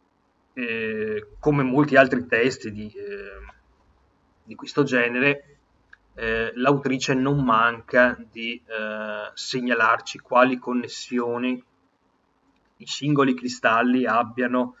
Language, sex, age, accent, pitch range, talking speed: Italian, male, 30-49, native, 120-150 Hz, 95 wpm